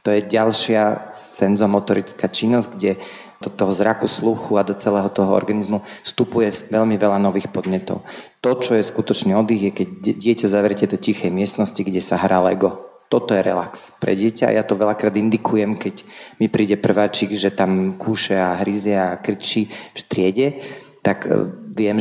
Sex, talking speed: male, 165 wpm